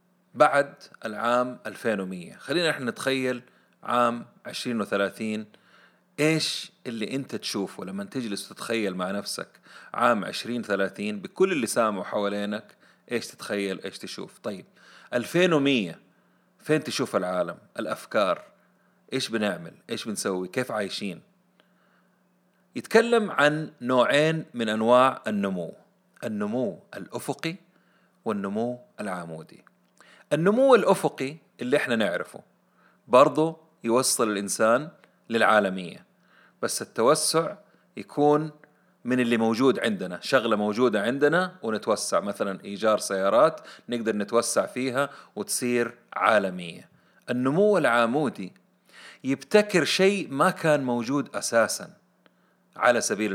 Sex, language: male, Arabic